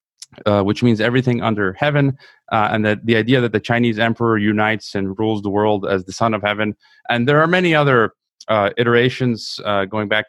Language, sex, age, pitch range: English, male, 30-49, 105-125 Hz